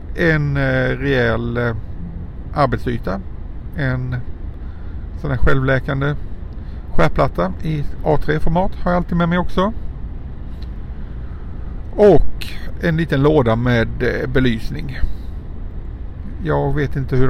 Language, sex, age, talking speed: Swedish, male, 50-69, 90 wpm